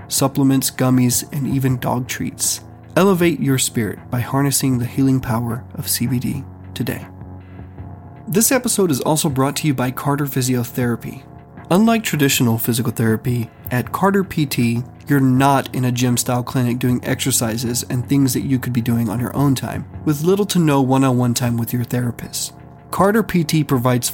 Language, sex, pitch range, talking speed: English, male, 120-145 Hz, 160 wpm